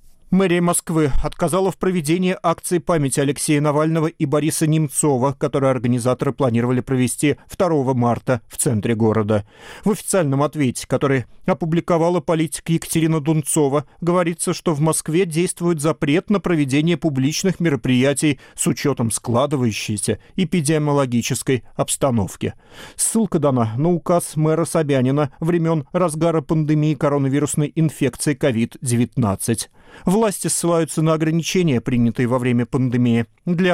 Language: Russian